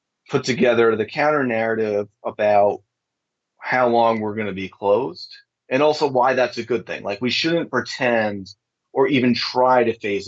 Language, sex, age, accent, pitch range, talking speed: English, male, 30-49, American, 105-125 Hz, 170 wpm